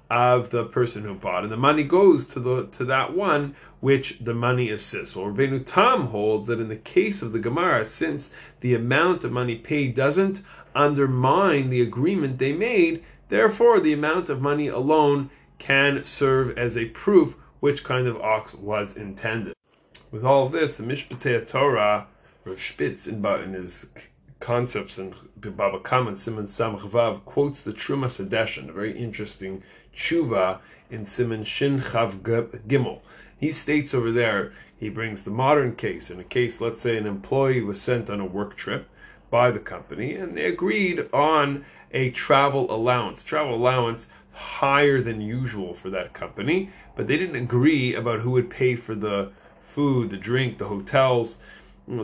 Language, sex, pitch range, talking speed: English, male, 110-140 Hz, 170 wpm